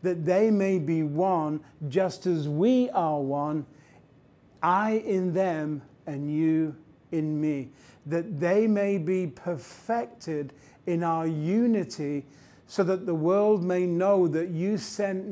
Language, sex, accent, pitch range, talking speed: English, male, British, 145-185 Hz, 135 wpm